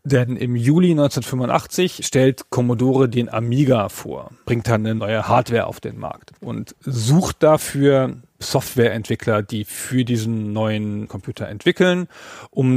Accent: German